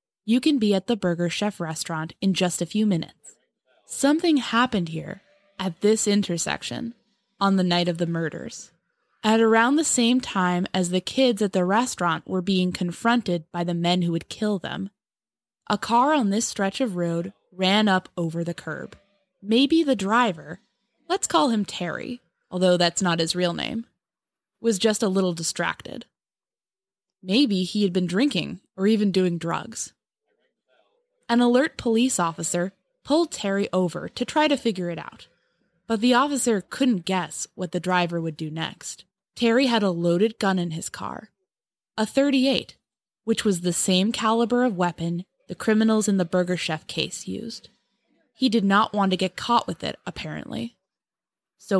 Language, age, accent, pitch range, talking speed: English, 10-29, American, 175-235 Hz, 170 wpm